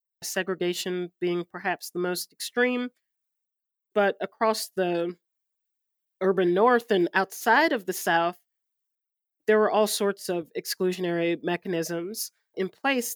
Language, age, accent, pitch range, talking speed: English, 30-49, American, 165-200 Hz, 115 wpm